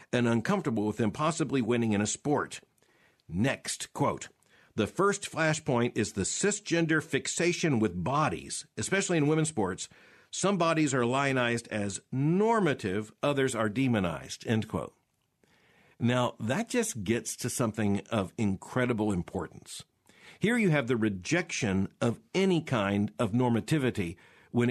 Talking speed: 135 wpm